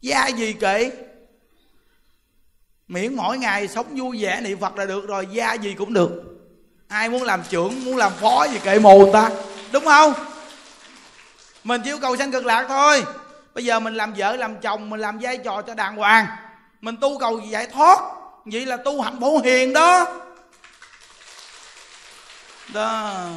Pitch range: 210-265 Hz